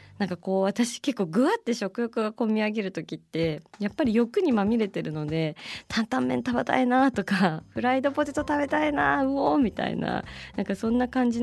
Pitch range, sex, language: 155-220 Hz, female, Japanese